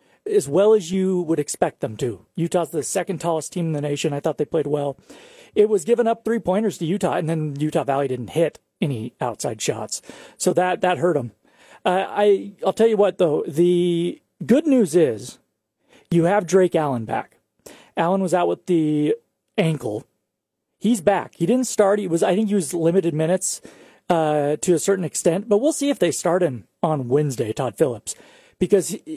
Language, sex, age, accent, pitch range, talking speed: English, male, 40-59, American, 160-205 Hz, 195 wpm